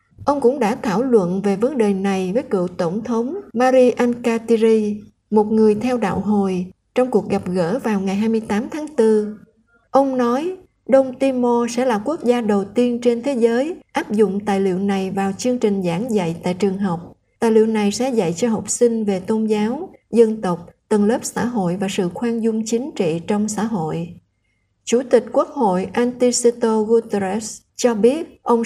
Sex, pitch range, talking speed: female, 210-245 Hz, 190 wpm